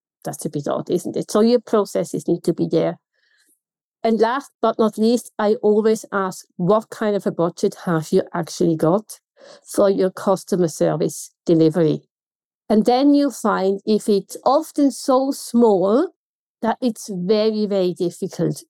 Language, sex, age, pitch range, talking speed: English, female, 50-69, 180-225 Hz, 155 wpm